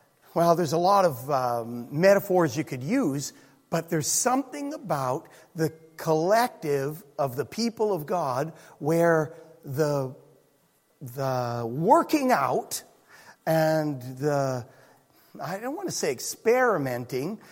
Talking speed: 115 wpm